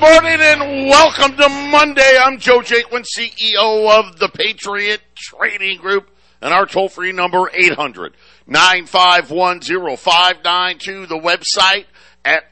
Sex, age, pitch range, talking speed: male, 50-69, 115-180 Hz, 115 wpm